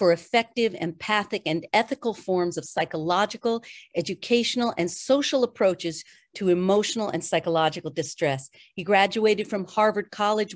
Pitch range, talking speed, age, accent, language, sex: 170-220 Hz, 125 wpm, 50-69, American, English, female